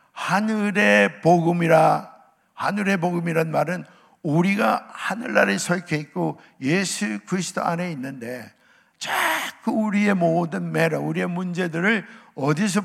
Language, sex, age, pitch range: Korean, male, 60-79, 165-200 Hz